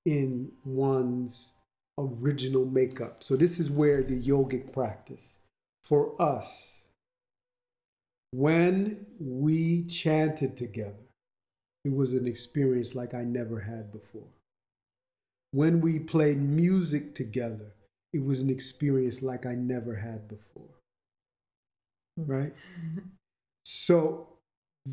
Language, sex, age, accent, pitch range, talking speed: English, male, 50-69, American, 115-145 Hz, 100 wpm